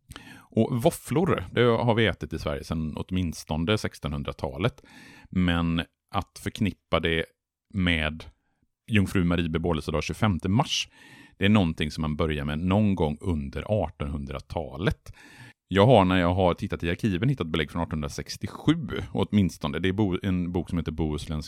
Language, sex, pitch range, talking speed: Swedish, male, 80-105 Hz, 145 wpm